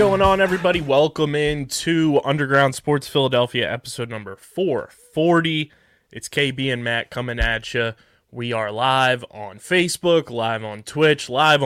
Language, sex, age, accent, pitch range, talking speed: English, male, 20-39, American, 115-140 Hz, 150 wpm